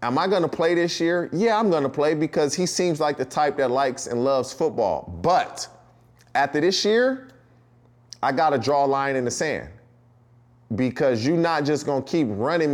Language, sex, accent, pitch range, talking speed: English, male, American, 120-150 Hz, 205 wpm